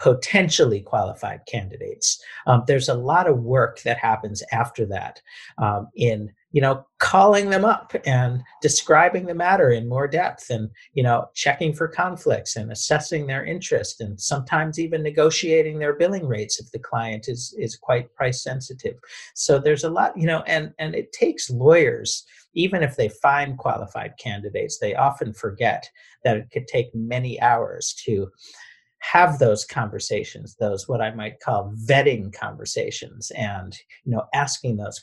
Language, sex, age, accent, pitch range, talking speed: English, male, 50-69, American, 115-170 Hz, 160 wpm